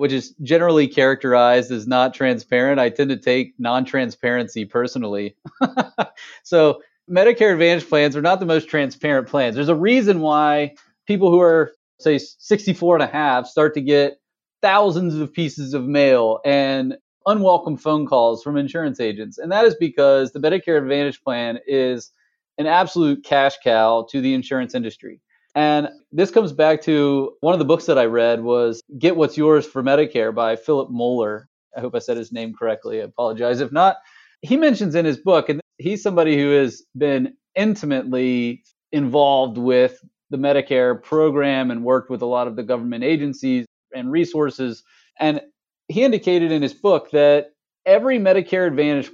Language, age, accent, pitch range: English, 30-49, American, 130-170 Hz